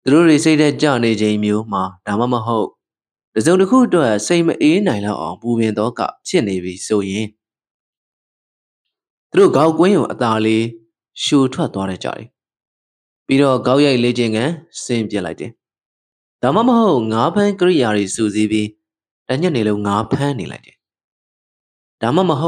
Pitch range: 105-150 Hz